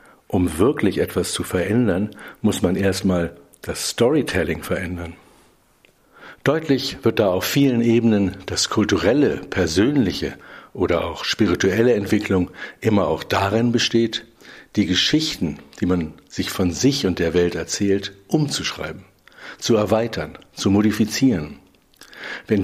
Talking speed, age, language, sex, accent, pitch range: 120 wpm, 60-79, German, male, German, 90-110 Hz